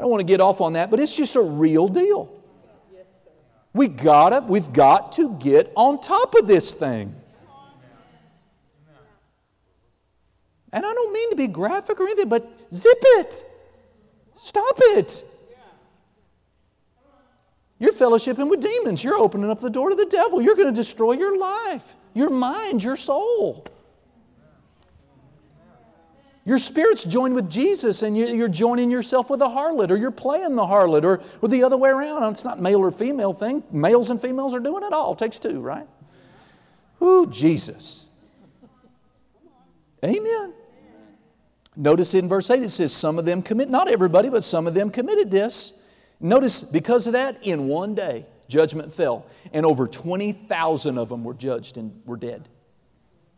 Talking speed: 155 wpm